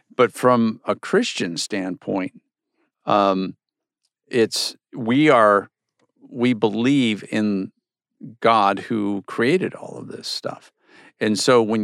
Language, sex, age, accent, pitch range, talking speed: English, male, 50-69, American, 100-125 Hz, 110 wpm